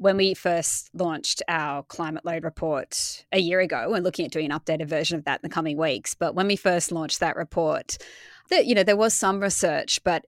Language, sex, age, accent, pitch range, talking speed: English, female, 20-39, Australian, 165-195 Hz, 230 wpm